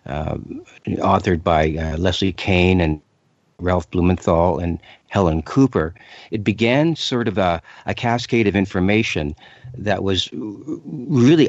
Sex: male